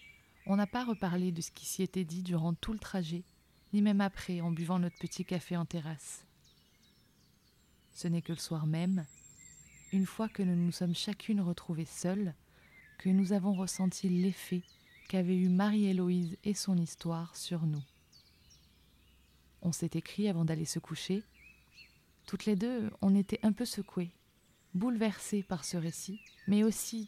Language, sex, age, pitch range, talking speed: French, female, 20-39, 165-200 Hz, 160 wpm